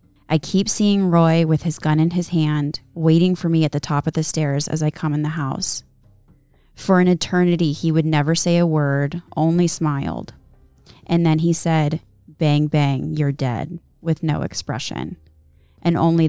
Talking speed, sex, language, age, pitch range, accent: 180 wpm, female, English, 20-39, 150-175 Hz, American